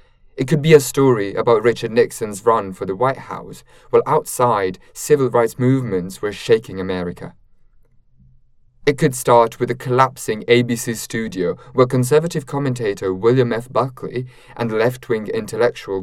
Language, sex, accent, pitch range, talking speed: English, male, British, 110-135 Hz, 140 wpm